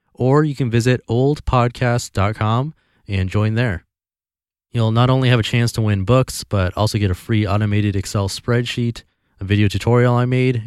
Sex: male